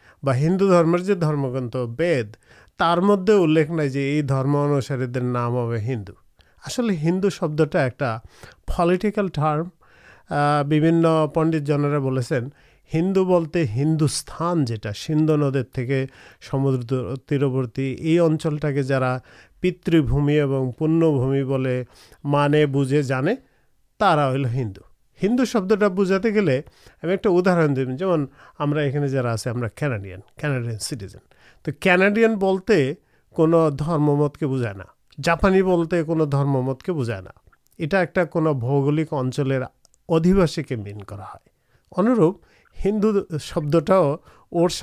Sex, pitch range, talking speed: male, 135-175 Hz, 105 wpm